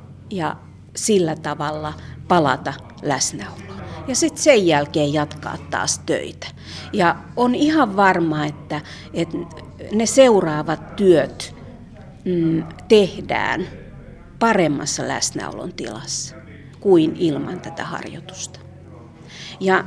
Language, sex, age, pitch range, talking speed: Finnish, female, 50-69, 160-225 Hz, 90 wpm